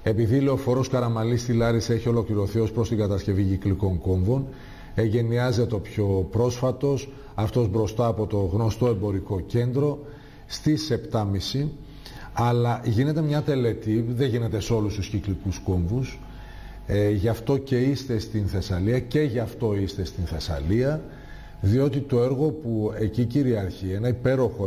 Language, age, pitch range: Greek, 40-59, 100-125 Hz